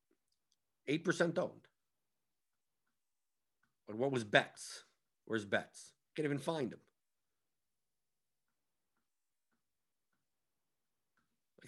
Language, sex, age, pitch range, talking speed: English, male, 50-69, 120-180 Hz, 60 wpm